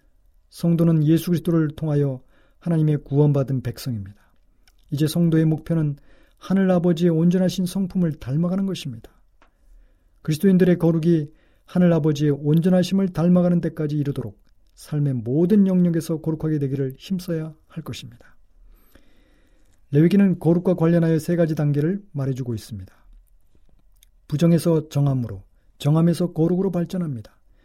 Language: Korean